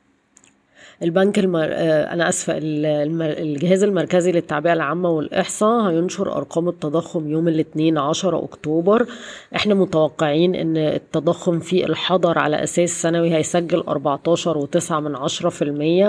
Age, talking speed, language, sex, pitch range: 20-39, 105 wpm, Arabic, female, 160-185 Hz